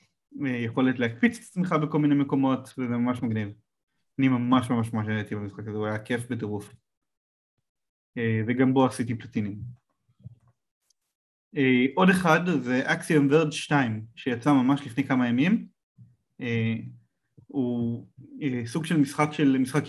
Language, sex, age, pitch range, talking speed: Hebrew, male, 20-39, 115-145 Hz, 120 wpm